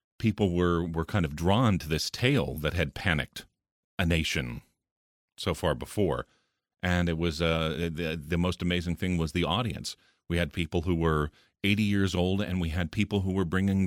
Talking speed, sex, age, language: 190 wpm, male, 40-59, English